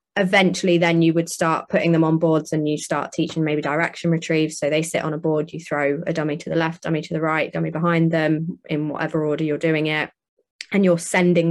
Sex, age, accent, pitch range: female, 20-39, British, 155-170 Hz